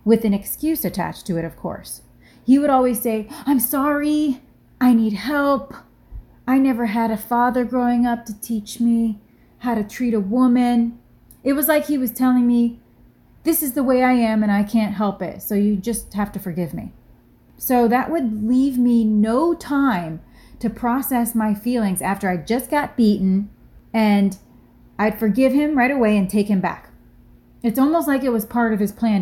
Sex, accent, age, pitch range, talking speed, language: female, American, 30-49, 190-245 Hz, 190 wpm, English